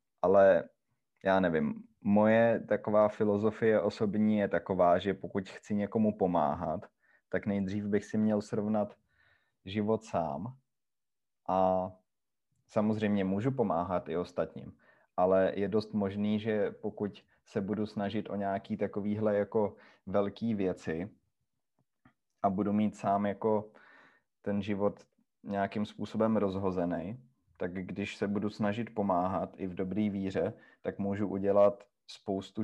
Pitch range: 100-110 Hz